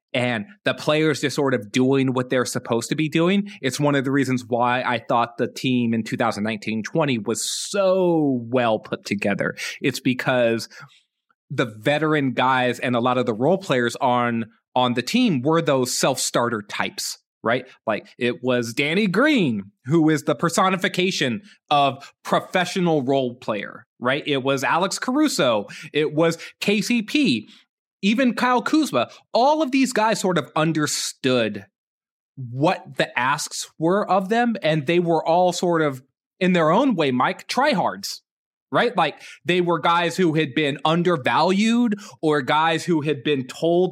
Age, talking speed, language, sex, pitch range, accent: 20-39, 155 wpm, English, male, 130-185 Hz, American